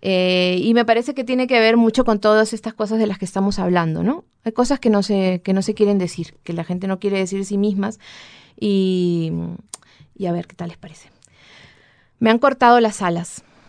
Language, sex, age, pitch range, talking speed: Spanish, female, 20-39, 185-225 Hz, 220 wpm